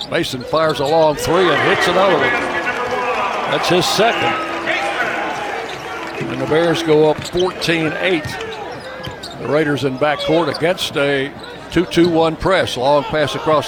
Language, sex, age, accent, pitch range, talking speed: English, male, 60-79, American, 145-175 Hz, 125 wpm